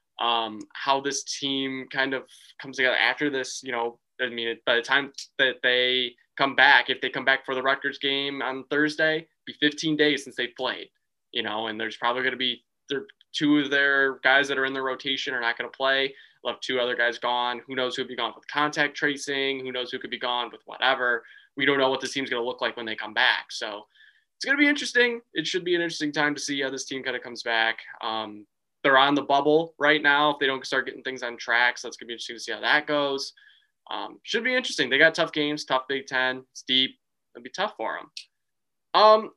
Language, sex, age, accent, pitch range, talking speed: English, male, 20-39, American, 125-150 Hz, 245 wpm